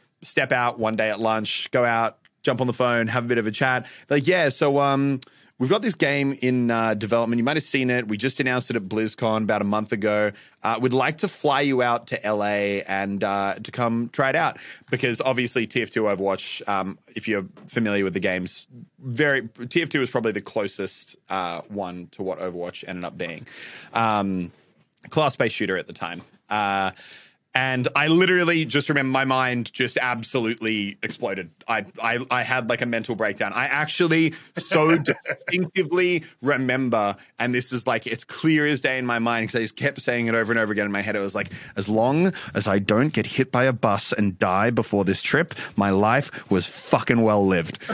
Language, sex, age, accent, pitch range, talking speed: English, male, 20-39, Australian, 110-140 Hz, 205 wpm